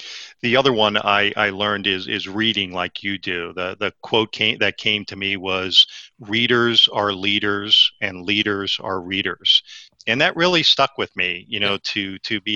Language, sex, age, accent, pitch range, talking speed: English, male, 40-59, American, 100-120 Hz, 185 wpm